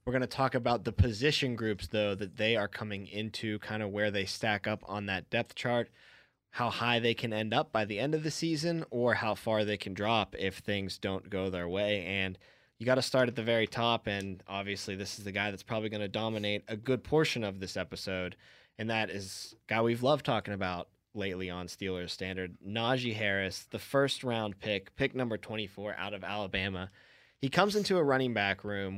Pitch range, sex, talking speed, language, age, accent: 95-115 Hz, male, 215 wpm, English, 20-39, American